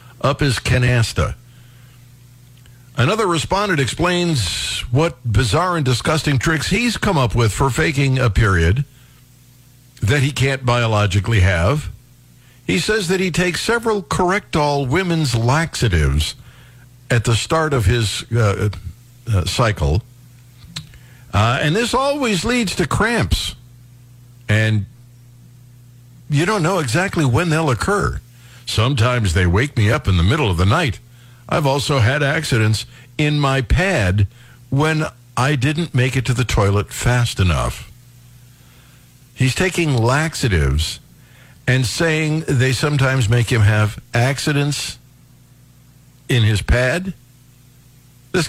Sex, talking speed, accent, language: male, 125 wpm, American, English